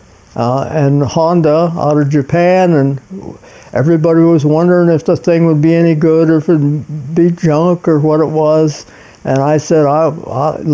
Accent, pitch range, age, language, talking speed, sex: American, 145-170 Hz, 60-79, English, 185 wpm, male